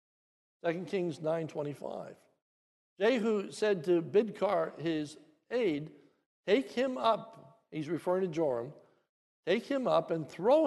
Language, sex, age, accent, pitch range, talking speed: English, male, 60-79, American, 165-215 Hz, 120 wpm